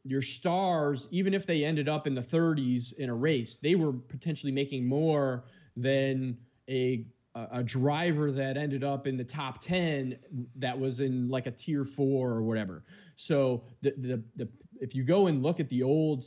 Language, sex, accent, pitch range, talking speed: English, male, American, 130-155 Hz, 185 wpm